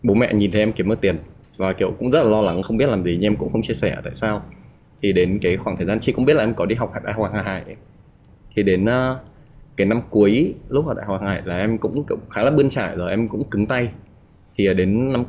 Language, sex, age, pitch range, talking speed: Vietnamese, male, 20-39, 90-110 Hz, 285 wpm